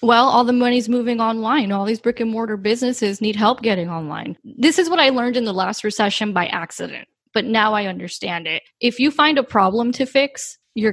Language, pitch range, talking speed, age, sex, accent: English, 200-240 Hz, 220 wpm, 10-29, female, American